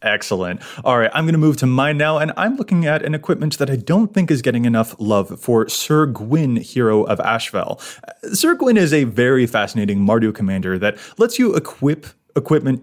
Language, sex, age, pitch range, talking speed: English, male, 20-39, 120-160 Hz, 200 wpm